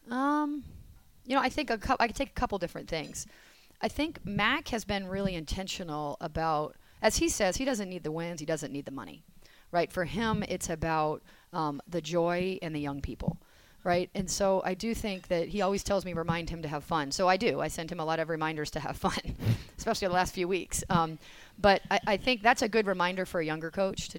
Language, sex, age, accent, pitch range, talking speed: English, female, 30-49, American, 160-205 Hz, 230 wpm